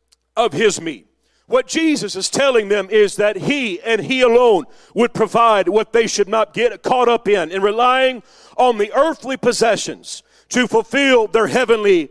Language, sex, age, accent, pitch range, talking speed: English, male, 40-59, American, 210-265 Hz, 170 wpm